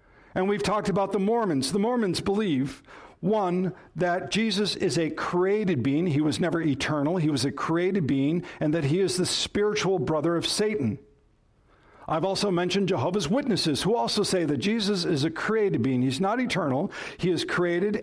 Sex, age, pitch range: male, 60-79, 135-200 Hz